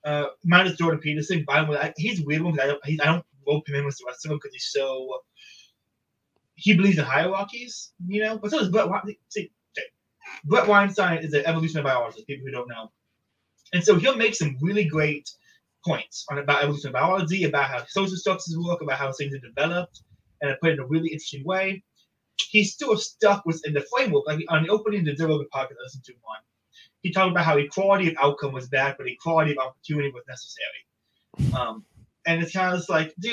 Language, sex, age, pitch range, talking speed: English, male, 20-39, 145-190 Hz, 210 wpm